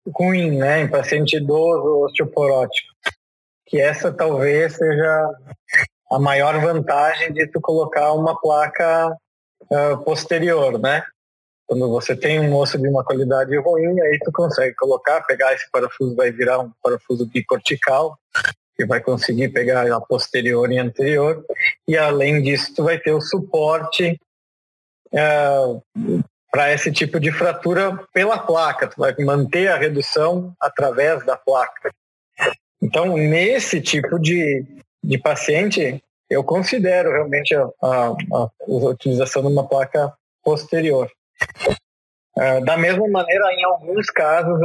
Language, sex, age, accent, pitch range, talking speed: Portuguese, male, 20-39, Brazilian, 140-170 Hz, 130 wpm